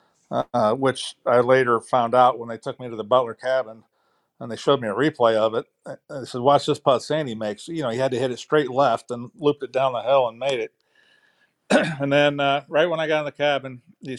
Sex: male